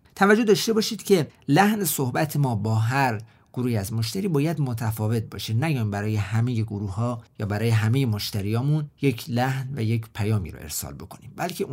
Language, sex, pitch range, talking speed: Persian, male, 110-150 Hz, 170 wpm